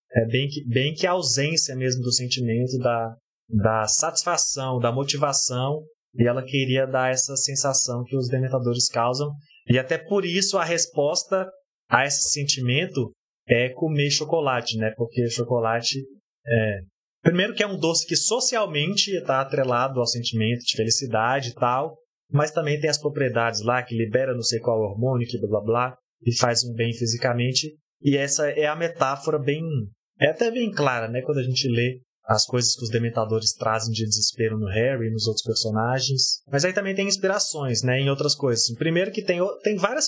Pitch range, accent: 120-150 Hz, Brazilian